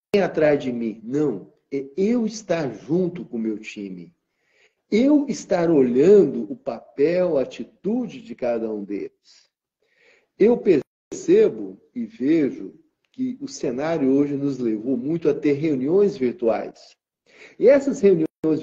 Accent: Brazilian